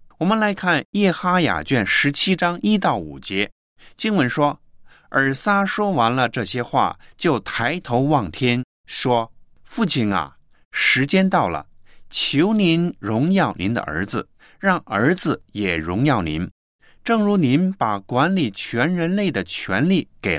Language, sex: Chinese, male